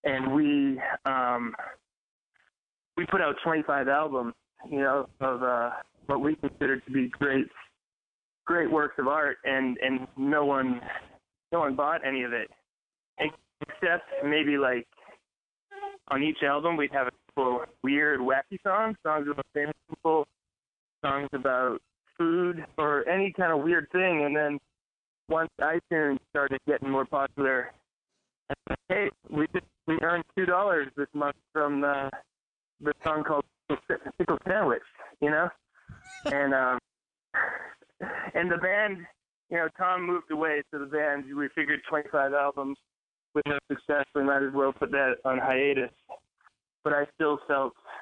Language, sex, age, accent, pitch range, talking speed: English, male, 20-39, American, 135-160 Hz, 150 wpm